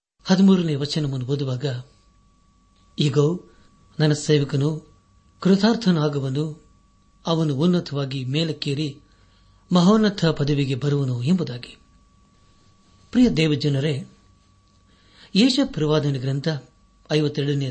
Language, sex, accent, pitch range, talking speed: Kannada, male, native, 105-160 Hz, 65 wpm